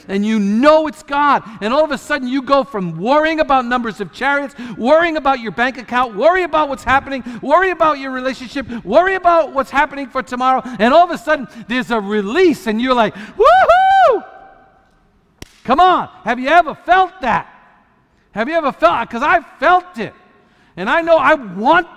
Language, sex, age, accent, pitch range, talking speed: English, male, 50-69, American, 205-310 Hz, 190 wpm